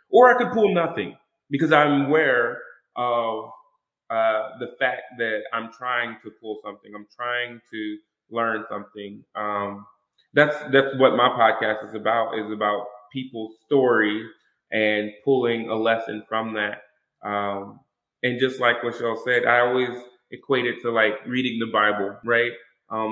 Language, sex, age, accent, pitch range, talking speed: English, male, 20-39, American, 105-120 Hz, 155 wpm